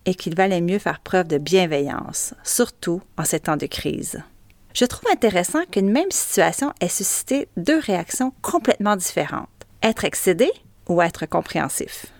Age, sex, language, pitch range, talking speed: 30-49, female, French, 165-230 Hz, 150 wpm